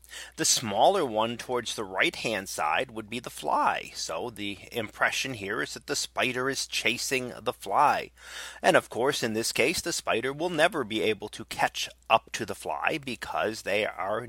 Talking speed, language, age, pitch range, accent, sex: 190 wpm, English, 30-49, 110-135 Hz, American, male